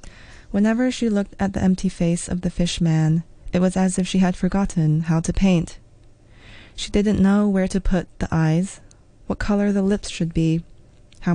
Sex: female